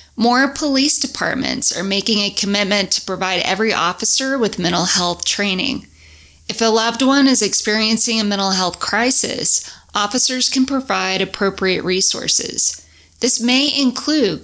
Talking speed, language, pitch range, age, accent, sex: 135 wpm, English, 190-250 Hz, 20-39, American, female